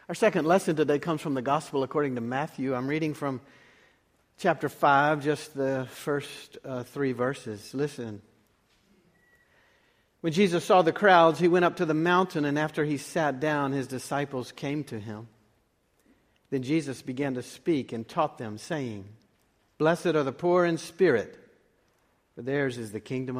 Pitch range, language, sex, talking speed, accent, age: 125-165 Hz, English, male, 165 wpm, American, 50-69